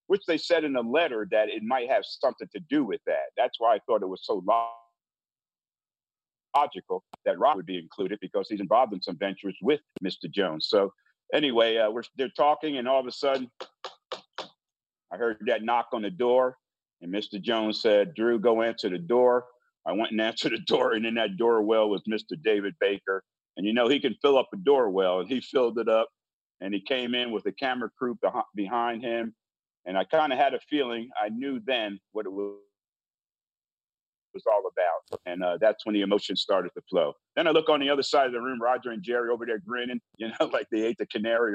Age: 50-69